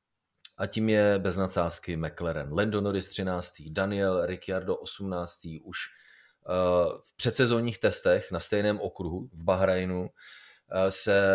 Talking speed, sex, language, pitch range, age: 115 wpm, male, Czech, 90-105 Hz, 30-49